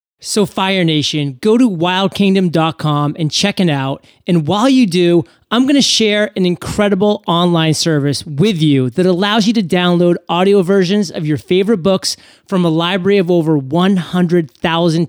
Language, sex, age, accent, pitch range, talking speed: English, male, 30-49, American, 160-200 Hz, 165 wpm